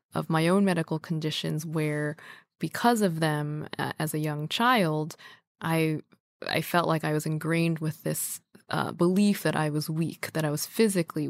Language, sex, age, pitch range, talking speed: English, female, 20-39, 150-180 Hz, 175 wpm